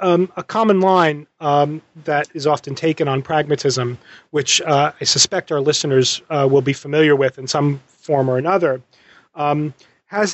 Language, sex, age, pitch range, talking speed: English, male, 30-49, 135-170 Hz, 170 wpm